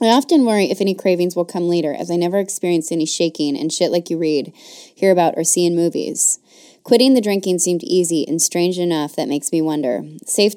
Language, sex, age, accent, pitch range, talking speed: English, female, 20-39, American, 155-180 Hz, 220 wpm